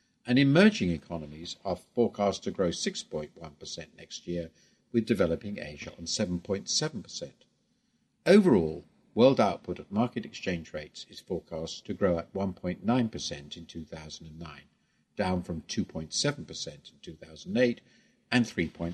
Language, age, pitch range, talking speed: English, 50-69, 85-115 Hz, 120 wpm